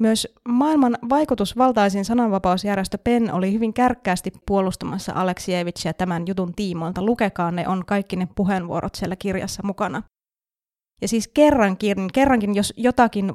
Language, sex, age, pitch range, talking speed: Finnish, female, 20-39, 180-215 Hz, 125 wpm